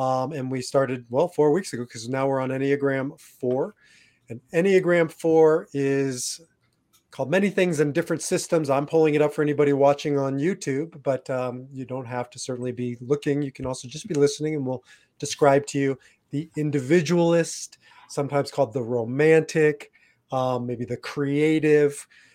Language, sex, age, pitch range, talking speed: English, male, 30-49, 130-155 Hz, 170 wpm